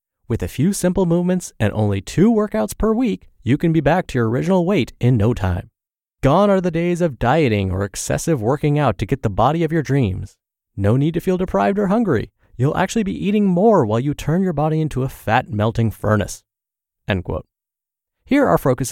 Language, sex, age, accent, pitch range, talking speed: English, male, 30-49, American, 110-165 Hz, 205 wpm